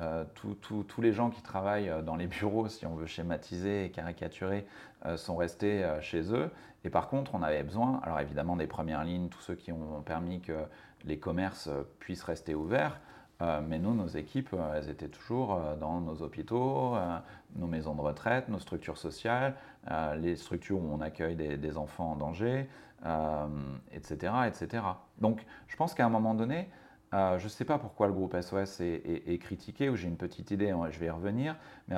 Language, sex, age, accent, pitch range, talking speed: French, male, 40-59, French, 80-110 Hz, 200 wpm